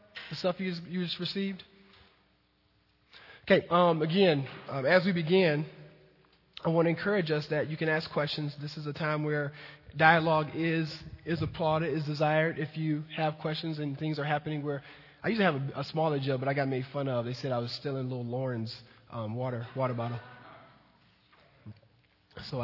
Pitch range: 135-170 Hz